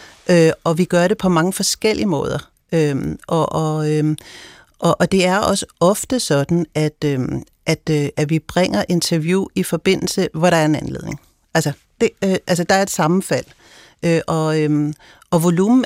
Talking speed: 180 wpm